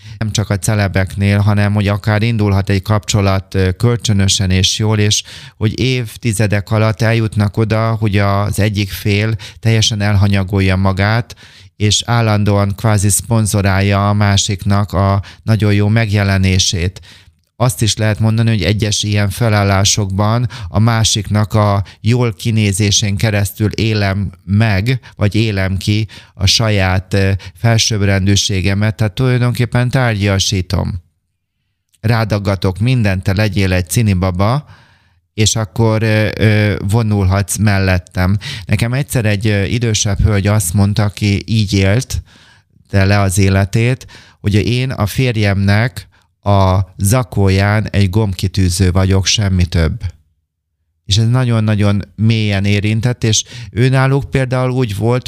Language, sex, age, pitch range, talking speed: Hungarian, male, 30-49, 100-110 Hz, 115 wpm